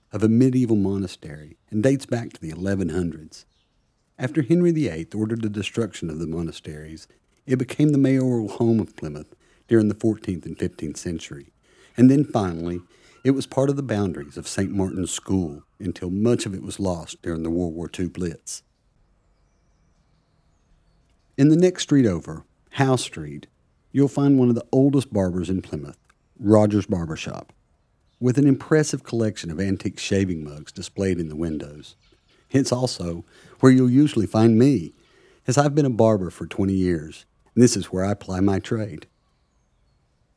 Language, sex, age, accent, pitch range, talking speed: English, male, 50-69, American, 90-130 Hz, 165 wpm